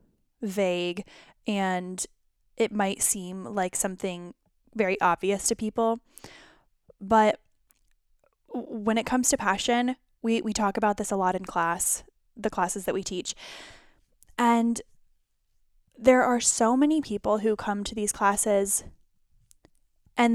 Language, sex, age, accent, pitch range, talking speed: English, female, 10-29, American, 190-230 Hz, 125 wpm